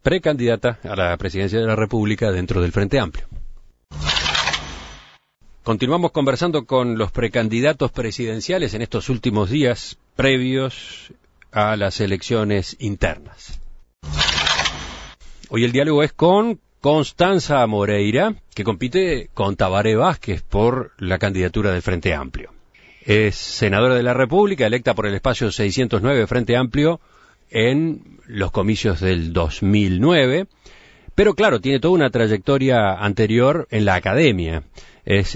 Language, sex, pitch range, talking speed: Spanish, male, 95-130 Hz, 120 wpm